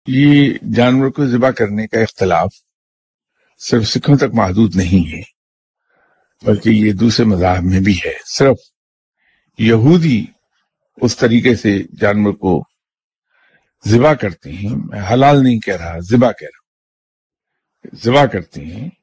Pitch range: 100-130 Hz